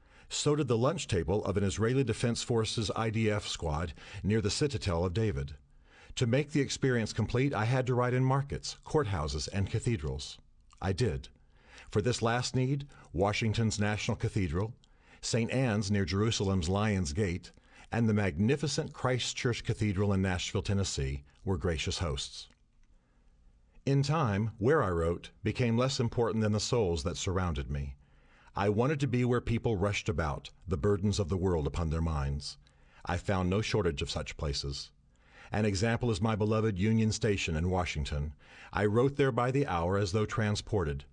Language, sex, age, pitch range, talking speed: English, male, 50-69, 85-115 Hz, 165 wpm